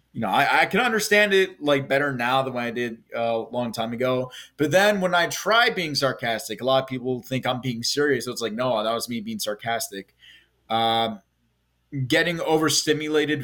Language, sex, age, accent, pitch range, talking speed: English, male, 20-39, American, 120-150 Hz, 205 wpm